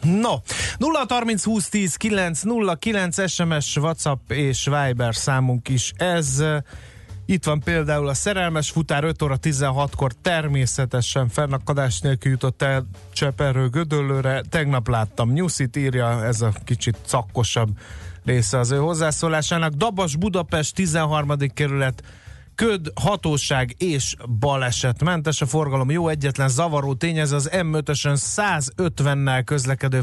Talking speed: 115 wpm